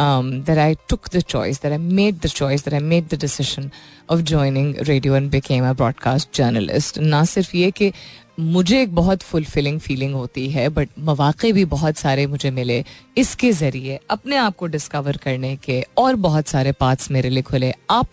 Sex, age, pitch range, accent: female, 30-49, 140-175 Hz, native